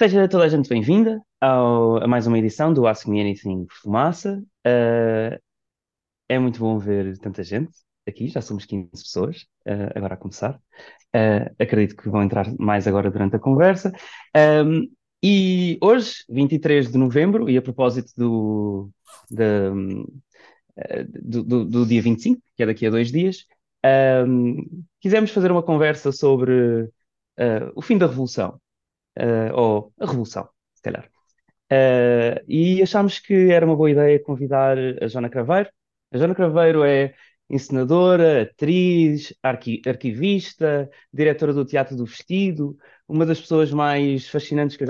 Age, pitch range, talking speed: 20-39, 115-160 Hz, 135 wpm